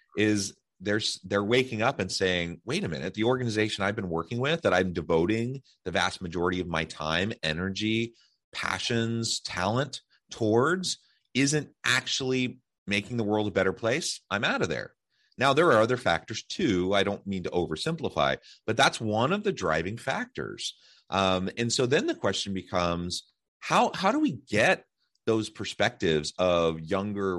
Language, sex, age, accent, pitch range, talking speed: English, male, 30-49, American, 85-115 Hz, 165 wpm